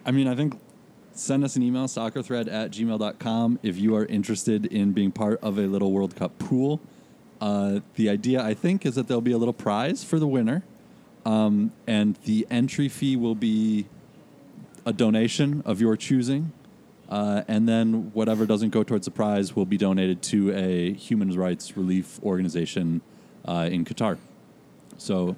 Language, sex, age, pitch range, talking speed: English, male, 30-49, 95-120 Hz, 175 wpm